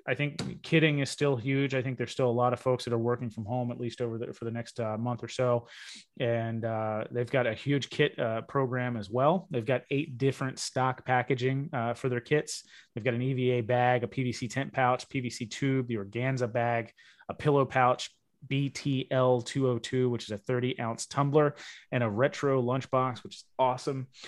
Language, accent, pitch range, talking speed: English, American, 115-135 Hz, 205 wpm